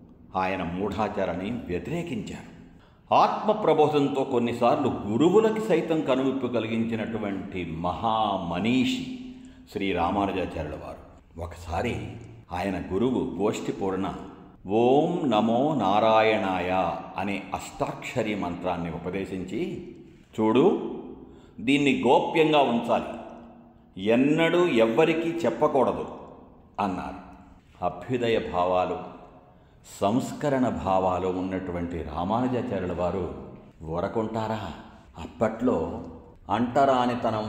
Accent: native